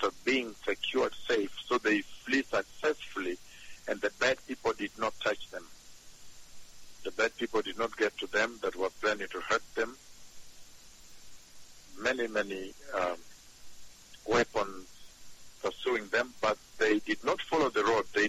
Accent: French